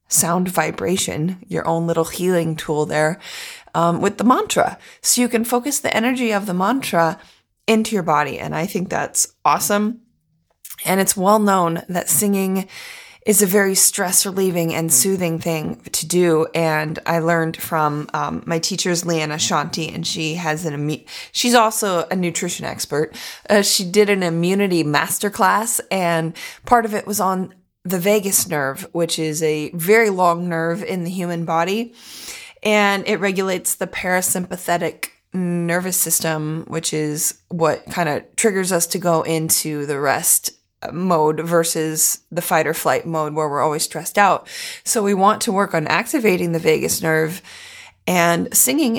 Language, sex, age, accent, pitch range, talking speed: English, female, 20-39, American, 160-205 Hz, 160 wpm